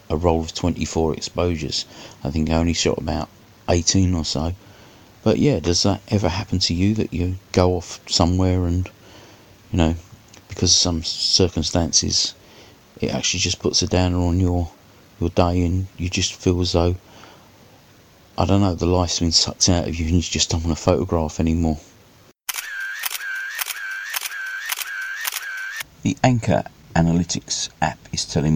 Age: 40-59